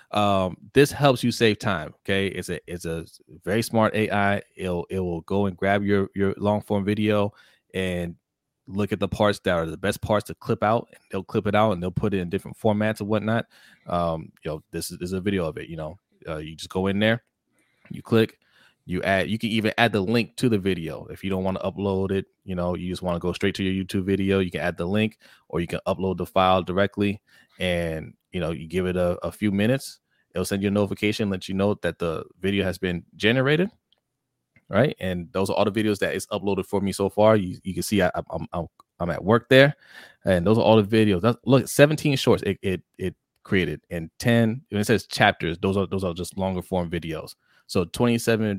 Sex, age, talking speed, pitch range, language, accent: male, 20-39, 235 wpm, 90-105 Hz, English, American